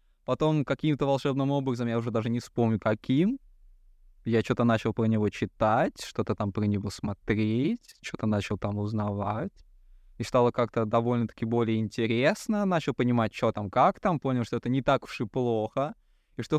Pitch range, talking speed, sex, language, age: 110-145 Hz, 170 wpm, male, Russian, 20-39